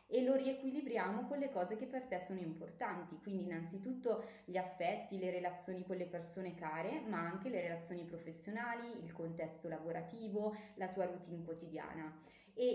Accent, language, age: native, Italian, 20-39